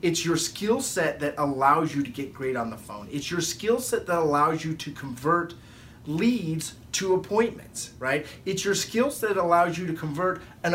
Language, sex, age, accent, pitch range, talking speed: English, male, 30-49, American, 140-185 Hz, 200 wpm